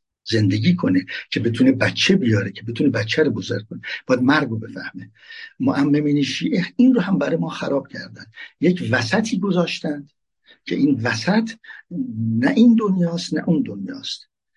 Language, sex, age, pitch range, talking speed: Persian, male, 60-79, 115-185 Hz, 150 wpm